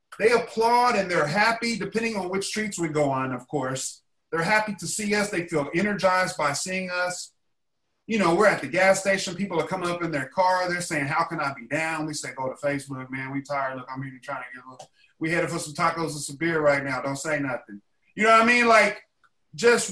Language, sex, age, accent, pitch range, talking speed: English, male, 30-49, American, 165-225 Hz, 245 wpm